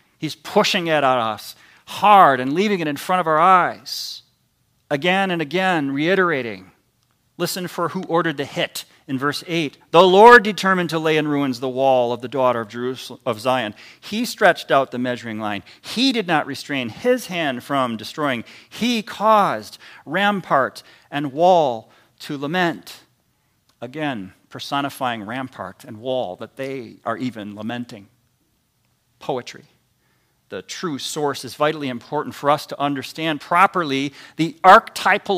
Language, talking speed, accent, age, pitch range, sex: English, 150 wpm, American, 40-59, 130-180 Hz, male